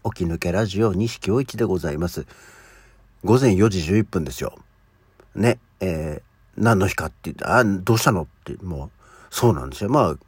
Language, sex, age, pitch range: Japanese, male, 60-79, 90-125 Hz